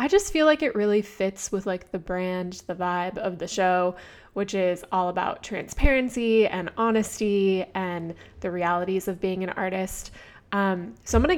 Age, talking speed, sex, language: 20-39, 185 wpm, female, English